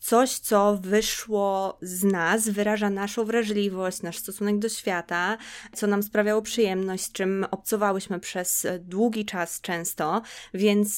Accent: native